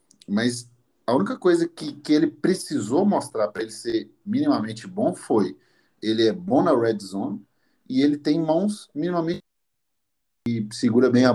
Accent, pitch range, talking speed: Brazilian, 100-130 Hz, 160 wpm